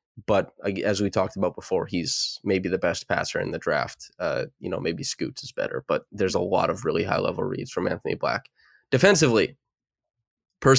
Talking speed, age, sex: 195 wpm, 20-39, male